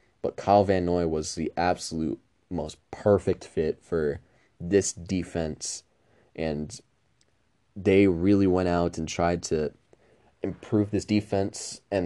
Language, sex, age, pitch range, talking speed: English, male, 20-39, 85-105 Hz, 125 wpm